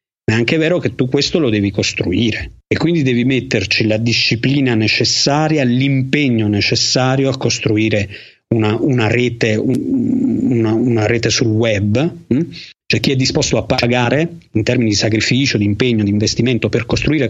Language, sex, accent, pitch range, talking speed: Italian, male, native, 110-135 Hz, 165 wpm